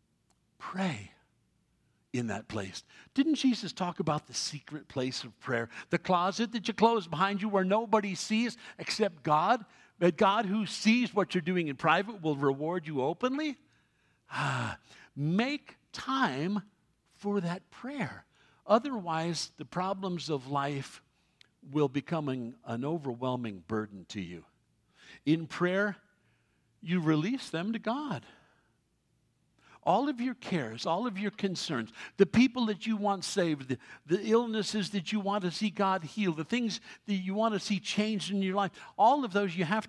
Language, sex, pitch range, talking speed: English, male, 160-230 Hz, 155 wpm